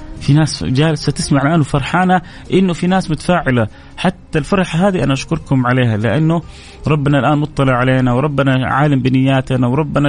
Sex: male